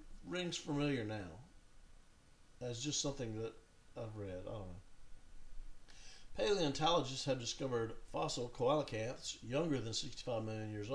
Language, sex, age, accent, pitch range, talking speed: English, male, 50-69, American, 105-135 Hz, 120 wpm